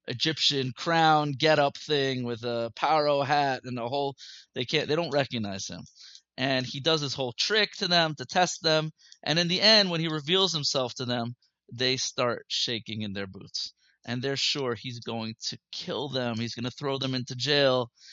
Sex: male